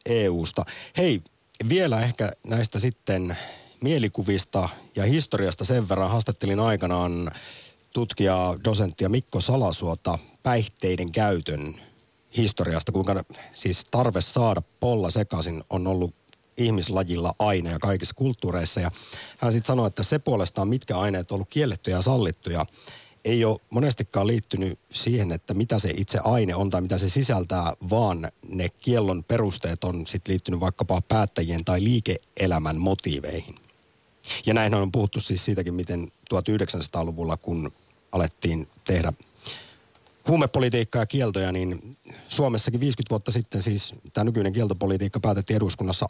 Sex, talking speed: male, 130 wpm